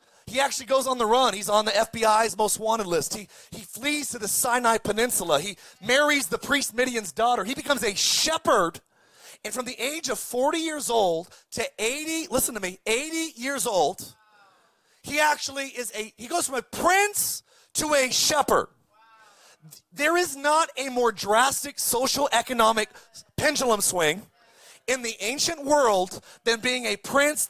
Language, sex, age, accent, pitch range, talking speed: English, male, 30-49, American, 215-275 Hz, 165 wpm